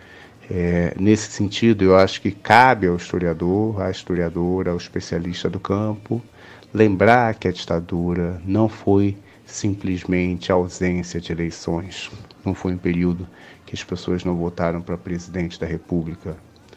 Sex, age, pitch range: male, 30-49, 85-95 Hz